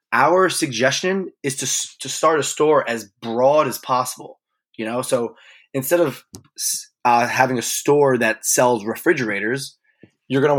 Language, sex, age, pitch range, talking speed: English, male, 20-39, 115-145 Hz, 155 wpm